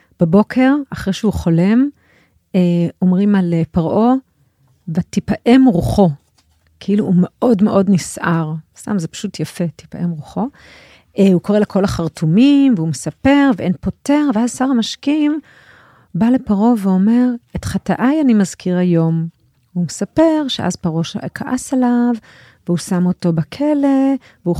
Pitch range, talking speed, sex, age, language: 165-235 Hz, 130 wpm, female, 40-59, Hebrew